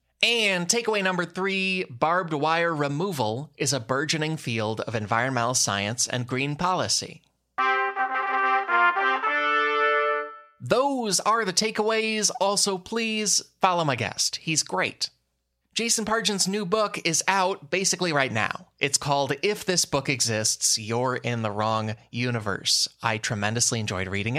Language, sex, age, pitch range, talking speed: English, male, 20-39, 110-160 Hz, 130 wpm